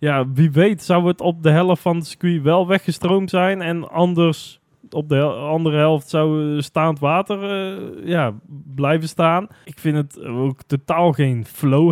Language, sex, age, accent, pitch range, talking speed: Dutch, male, 20-39, Dutch, 130-160 Hz, 165 wpm